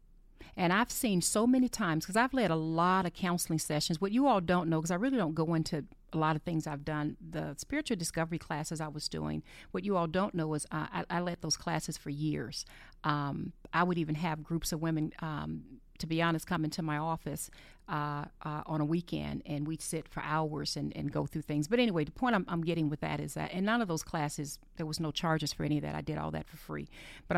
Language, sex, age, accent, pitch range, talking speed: English, female, 40-59, American, 150-175 Hz, 250 wpm